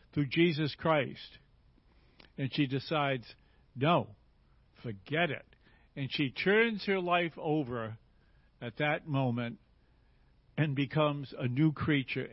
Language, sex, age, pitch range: English, male, 60-79, 130-165 Hz